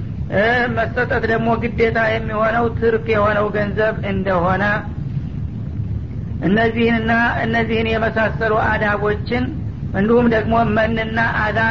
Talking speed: 85 wpm